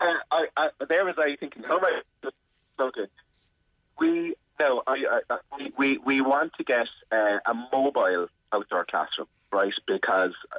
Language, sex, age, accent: English, male, 30-49, British